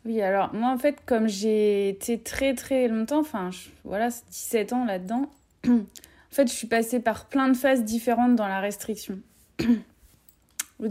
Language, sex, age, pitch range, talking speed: French, female, 20-39, 210-255 Hz, 165 wpm